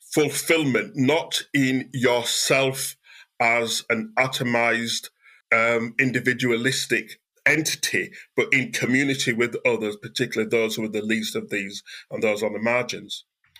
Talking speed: 125 wpm